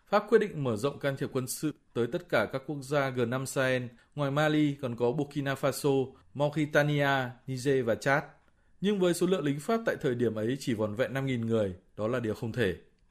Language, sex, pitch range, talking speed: Vietnamese, male, 125-155 Hz, 215 wpm